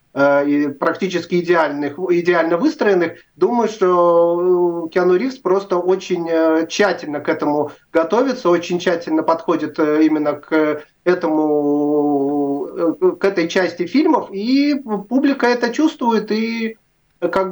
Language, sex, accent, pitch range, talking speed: Russian, male, native, 160-195 Hz, 95 wpm